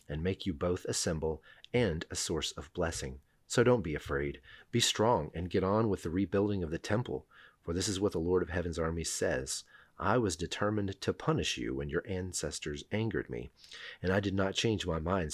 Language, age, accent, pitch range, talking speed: English, 40-59, American, 80-105 Hz, 210 wpm